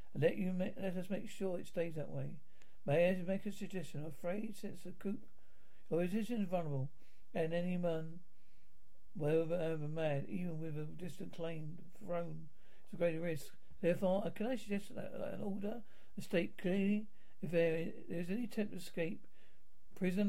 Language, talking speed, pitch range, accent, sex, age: English, 165 wpm, 160-195 Hz, British, male, 60-79